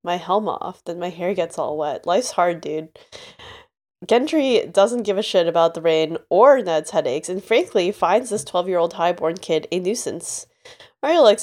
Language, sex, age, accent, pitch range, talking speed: English, female, 20-39, American, 175-220 Hz, 190 wpm